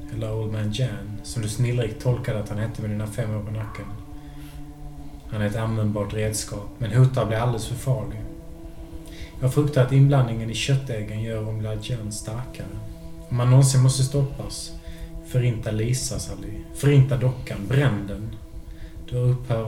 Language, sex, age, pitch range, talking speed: Swedish, male, 20-39, 105-125 Hz, 155 wpm